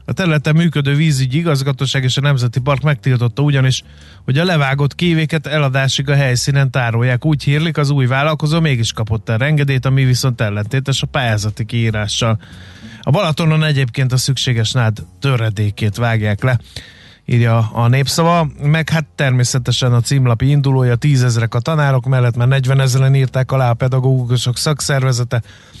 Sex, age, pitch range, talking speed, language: male, 30-49, 120-140 Hz, 150 wpm, Hungarian